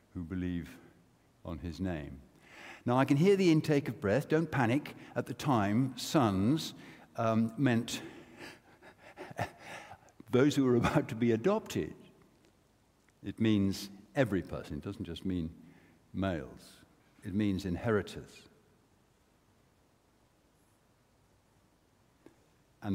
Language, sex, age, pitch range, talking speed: English, male, 60-79, 85-115 Hz, 105 wpm